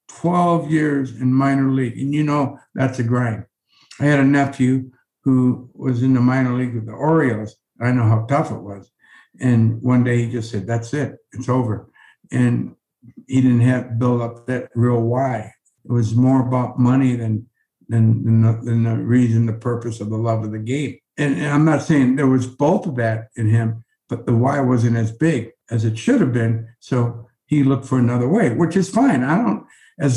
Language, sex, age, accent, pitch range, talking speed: English, male, 60-79, American, 120-155 Hz, 205 wpm